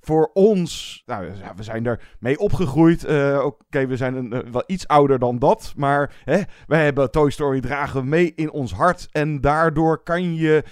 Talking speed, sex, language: 190 wpm, male, Dutch